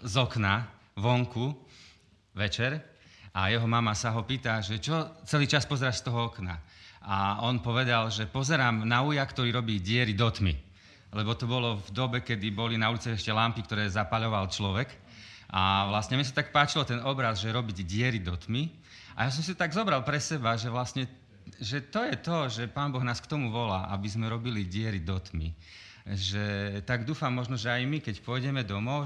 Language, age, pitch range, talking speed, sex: Slovak, 40-59, 105-130 Hz, 195 wpm, male